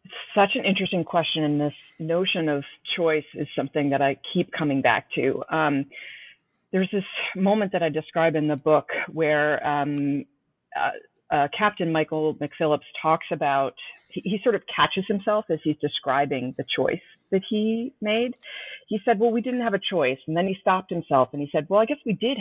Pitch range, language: 145-200 Hz, English